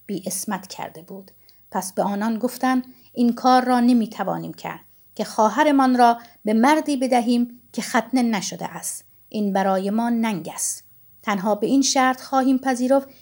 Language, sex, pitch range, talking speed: Persian, female, 205-250 Hz, 155 wpm